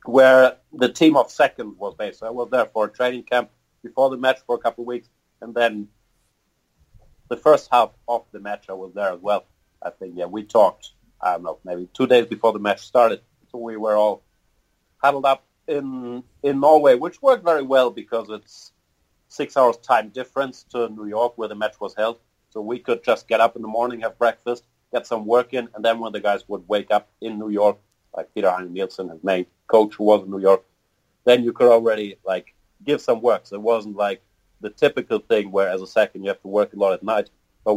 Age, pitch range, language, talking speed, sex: 40-59, 105-125 Hz, English, 225 wpm, male